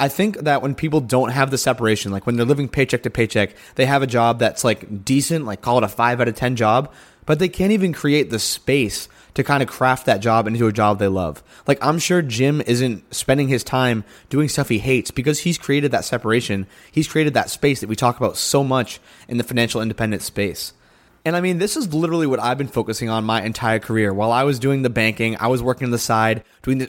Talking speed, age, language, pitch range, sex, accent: 245 wpm, 20-39, English, 115-145 Hz, male, American